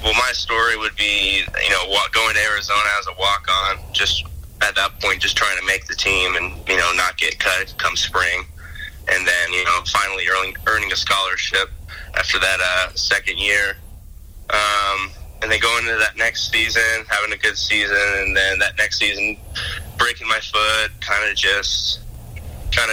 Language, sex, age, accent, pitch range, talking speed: English, male, 20-39, American, 85-105 Hz, 170 wpm